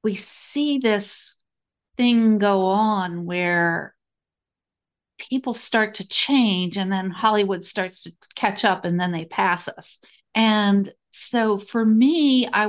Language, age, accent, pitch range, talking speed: English, 50-69, American, 175-215 Hz, 130 wpm